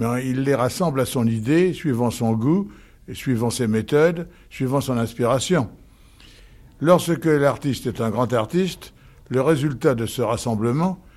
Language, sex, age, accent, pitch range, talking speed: French, male, 60-79, French, 115-145 Hz, 145 wpm